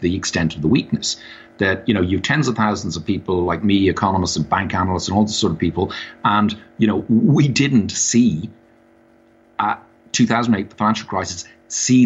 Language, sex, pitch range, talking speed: English, male, 85-115 Hz, 190 wpm